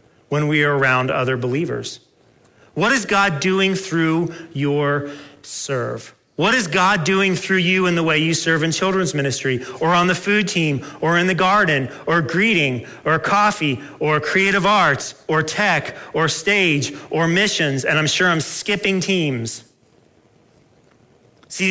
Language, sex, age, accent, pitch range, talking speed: English, male, 40-59, American, 135-185 Hz, 155 wpm